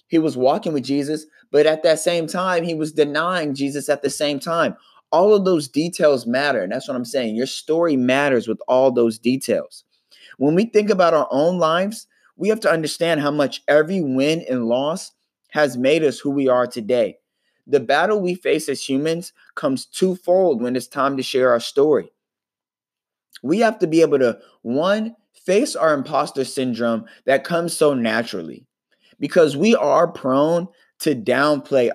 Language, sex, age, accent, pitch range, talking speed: English, male, 20-39, American, 130-175 Hz, 180 wpm